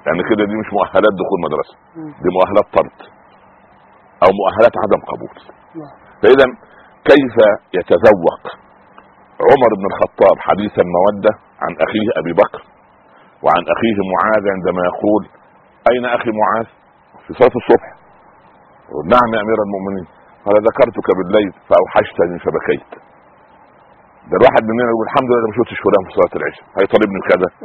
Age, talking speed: 50-69, 130 wpm